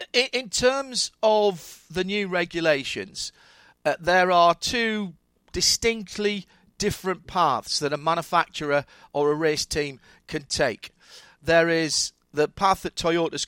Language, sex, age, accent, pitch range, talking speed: English, male, 40-59, British, 140-185 Hz, 125 wpm